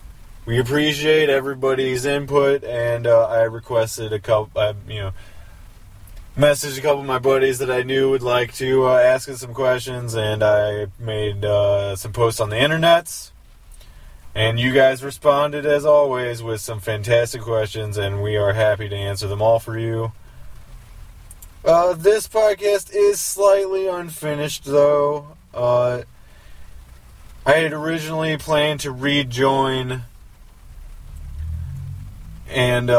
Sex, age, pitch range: male, 20-39, 105-135 Hz